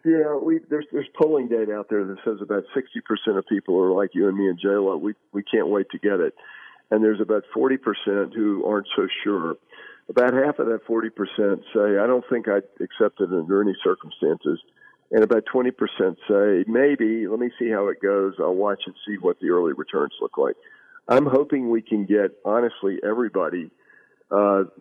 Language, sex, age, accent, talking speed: English, male, 50-69, American, 195 wpm